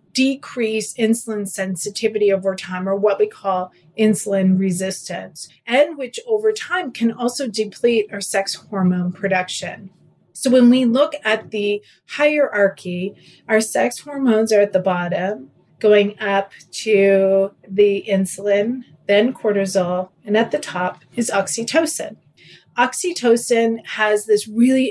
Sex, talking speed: female, 130 wpm